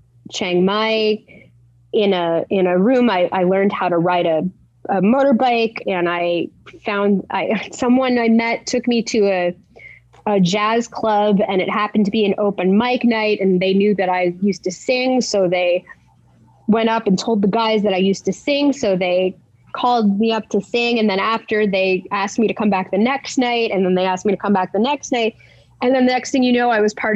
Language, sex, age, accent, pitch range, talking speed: English, female, 20-39, American, 185-240 Hz, 220 wpm